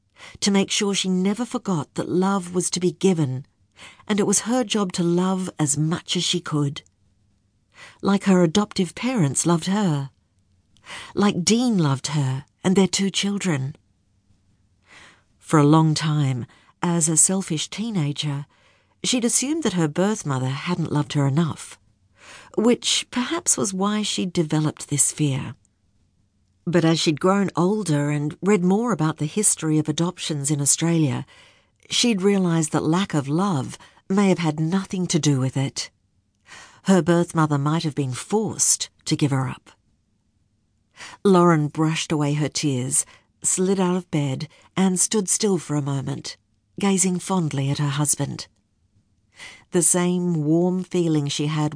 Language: English